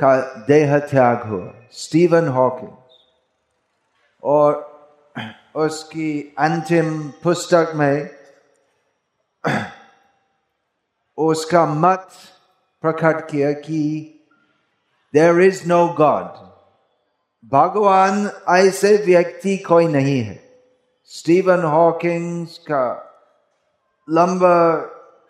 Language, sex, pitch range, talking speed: Hindi, male, 135-170 Hz, 65 wpm